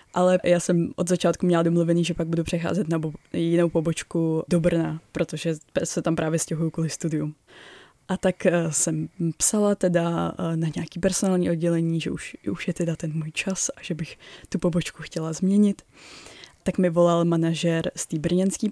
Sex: female